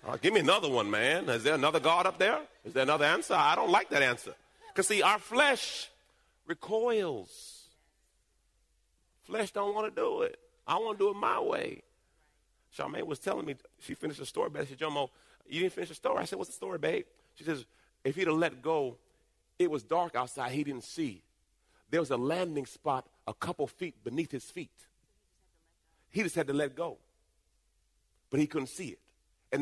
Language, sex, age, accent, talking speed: English, male, 40-59, American, 195 wpm